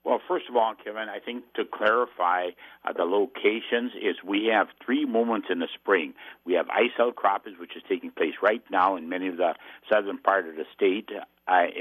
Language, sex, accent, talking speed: English, male, American, 205 wpm